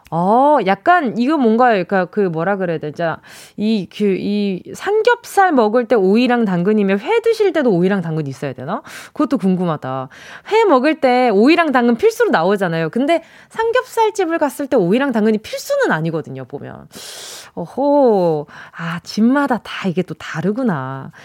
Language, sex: Korean, female